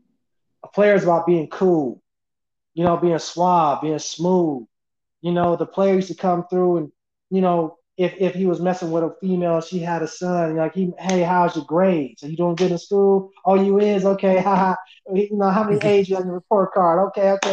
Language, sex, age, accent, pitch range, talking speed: English, male, 20-39, American, 185-255 Hz, 210 wpm